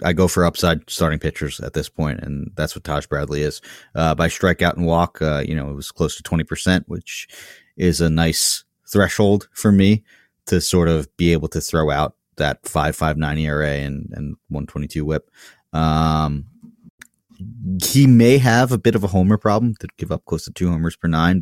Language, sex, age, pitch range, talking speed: English, male, 30-49, 75-90 Hz, 205 wpm